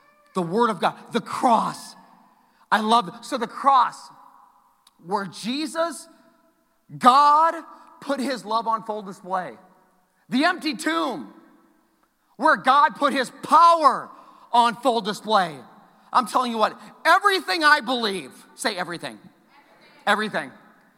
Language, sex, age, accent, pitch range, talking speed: English, male, 40-59, American, 220-325 Hz, 120 wpm